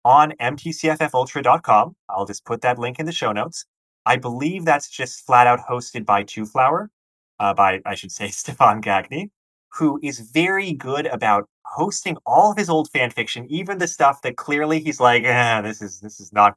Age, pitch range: 30-49, 105-140 Hz